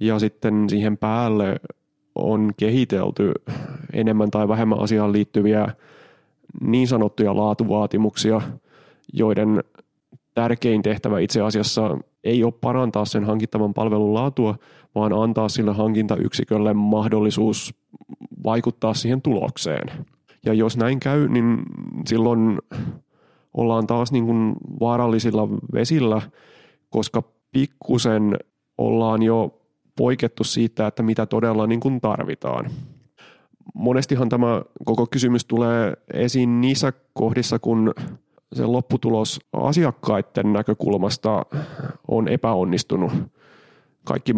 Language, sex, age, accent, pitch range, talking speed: Finnish, male, 30-49, native, 110-120 Hz, 95 wpm